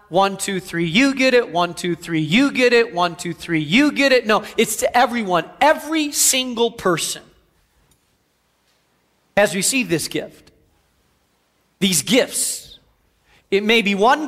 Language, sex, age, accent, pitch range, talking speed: English, male, 40-59, American, 195-260 Hz, 145 wpm